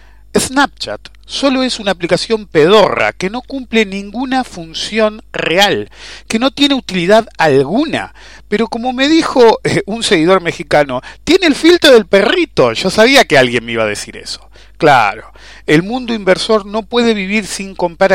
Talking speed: 155 wpm